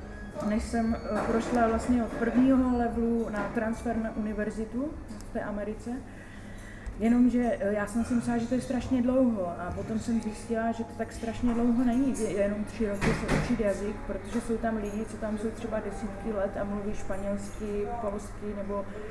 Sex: female